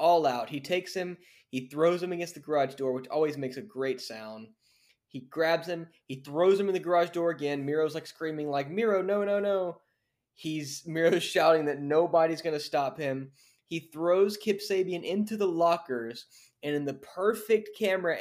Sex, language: male, English